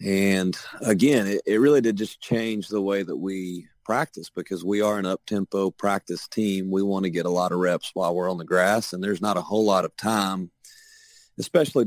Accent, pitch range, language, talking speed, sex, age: American, 90-110 Hz, English, 210 wpm, male, 40-59